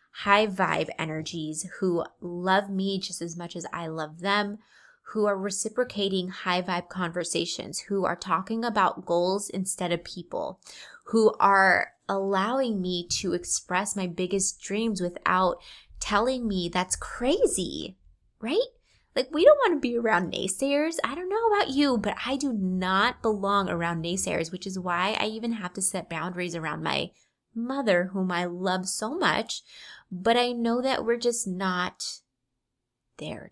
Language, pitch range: English, 180-230 Hz